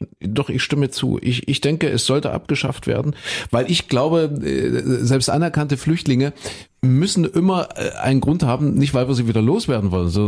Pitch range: 100-130 Hz